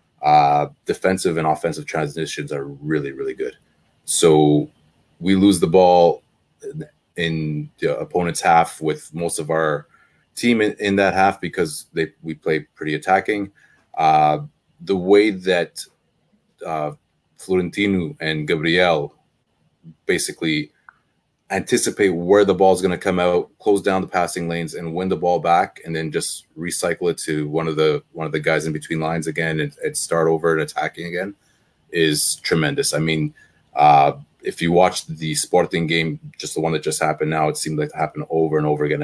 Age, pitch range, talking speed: 30-49, 75-95 Hz, 170 wpm